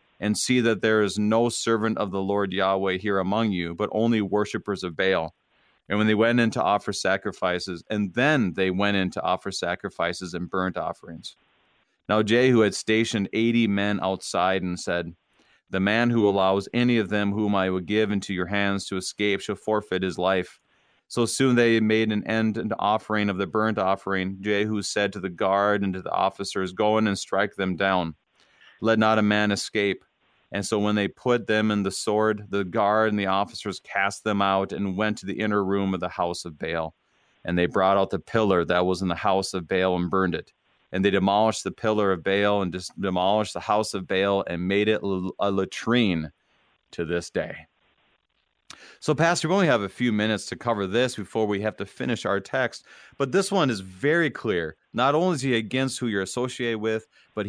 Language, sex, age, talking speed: English, male, 40-59, 205 wpm